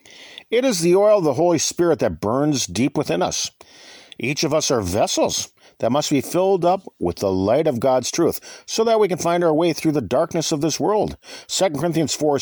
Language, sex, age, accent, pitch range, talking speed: English, male, 50-69, American, 120-185 Hz, 215 wpm